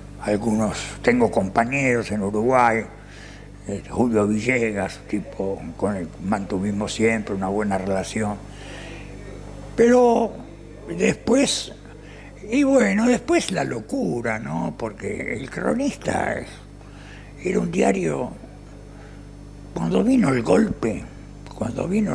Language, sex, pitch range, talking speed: Spanish, male, 105-140 Hz, 100 wpm